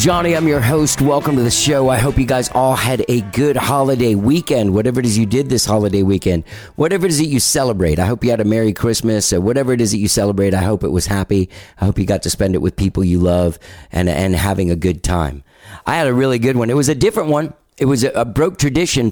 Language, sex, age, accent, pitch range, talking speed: English, male, 40-59, American, 95-130 Hz, 265 wpm